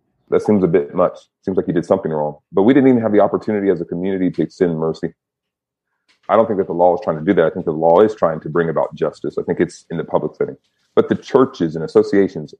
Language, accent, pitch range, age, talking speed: English, American, 90-110 Hz, 30-49, 270 wpm